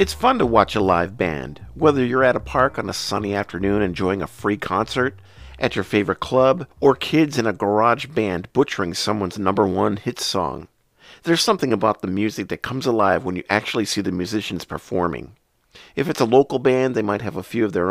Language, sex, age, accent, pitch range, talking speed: English, male, 50-69, American, 95-125 Hz, 210 wpm